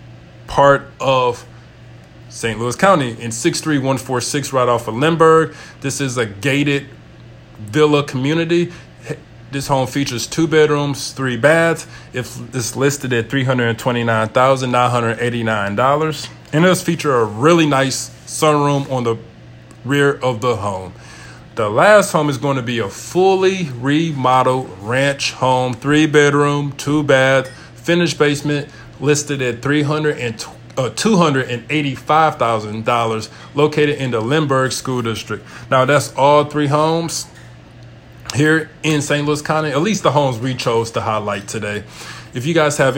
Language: English